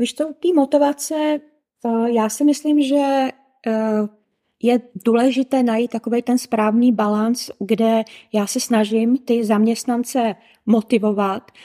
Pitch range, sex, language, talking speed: 210-245 Hz, female, Czech, 130 wpm